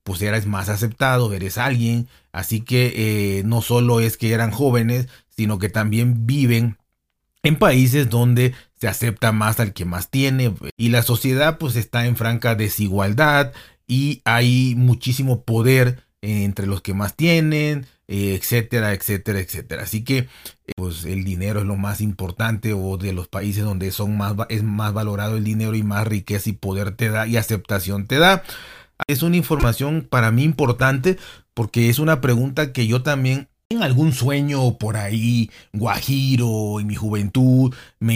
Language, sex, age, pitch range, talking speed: Spanish, male, 40-59, 105-130 Hz, 165 wpm